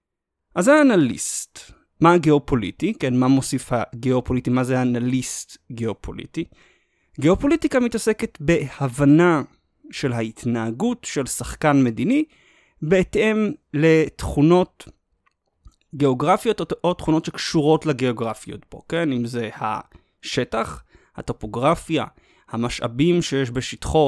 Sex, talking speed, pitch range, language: male, 90 wpm, 125-170 Hz, Hebrew